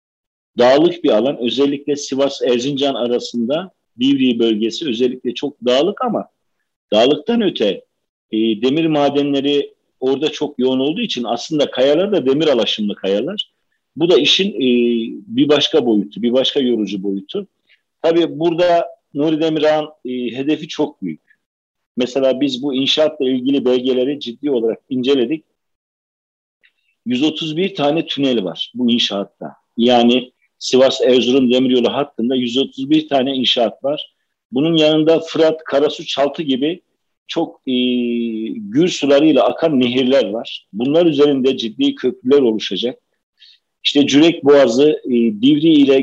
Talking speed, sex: 125 wpm, male